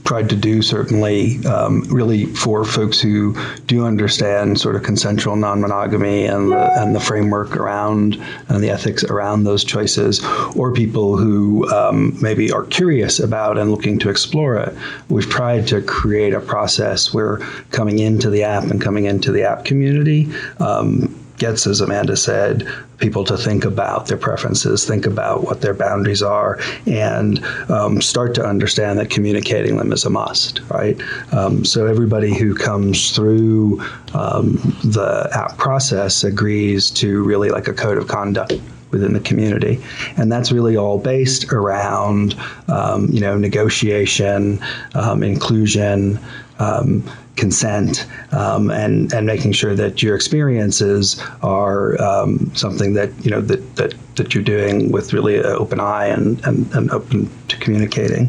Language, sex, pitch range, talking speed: English, male, 100-120 Hz, 150 wpm